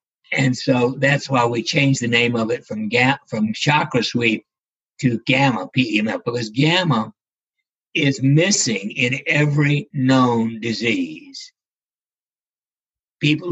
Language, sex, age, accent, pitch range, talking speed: English, male, 60-79, American, 120-155 Hz, 135 wpm